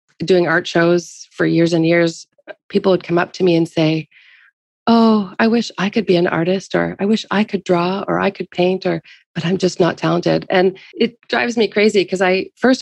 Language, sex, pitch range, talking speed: English, female, 165-195 Hz, 220 wpm